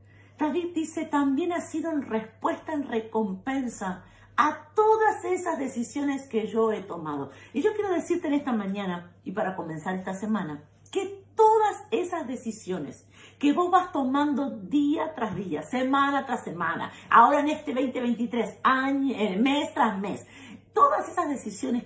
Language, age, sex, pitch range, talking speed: Spanish, 50-69, female, 215-320 Hz, 150 wpm